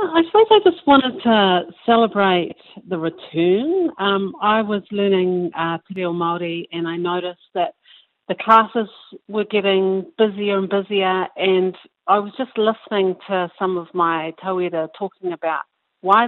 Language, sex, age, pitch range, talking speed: English, female, 50-69, 185-220 Hz, 150 wpm